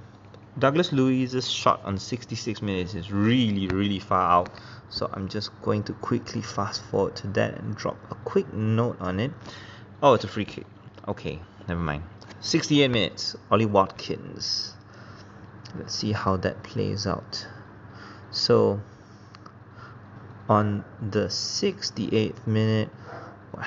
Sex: male